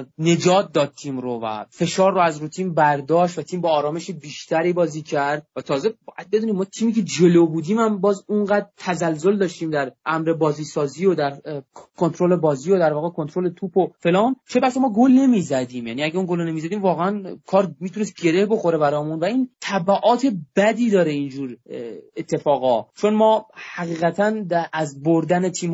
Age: 30-49